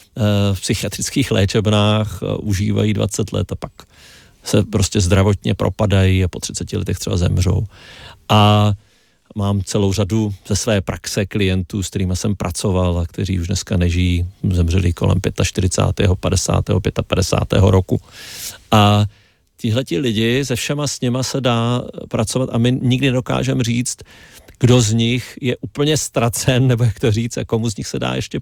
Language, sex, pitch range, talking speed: Czech, male, 100-120 Hz, 155 wpm